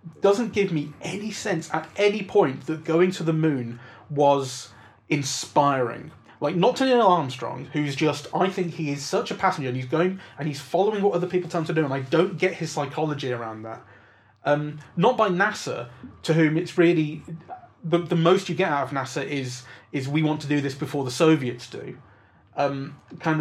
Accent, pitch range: British, 130-160 Hz